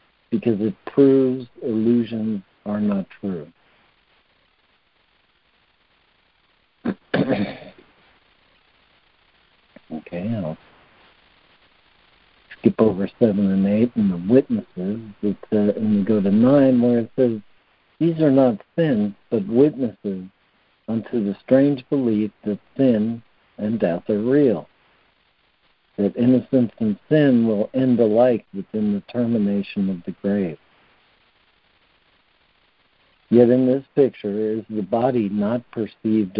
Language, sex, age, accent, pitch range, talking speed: English, male, 60-79, American, 105-135 Hz, 105 wpm